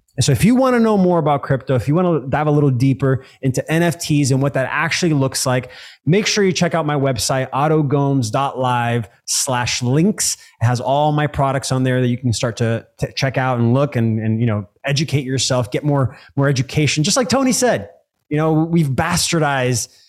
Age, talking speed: 20-39, 210 wpm